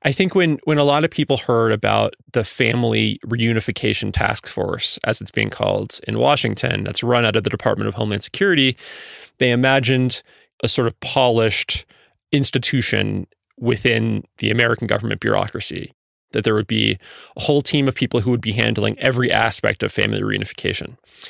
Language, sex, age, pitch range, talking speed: English, male, 20-39, 110-130 Hz, 170 wpm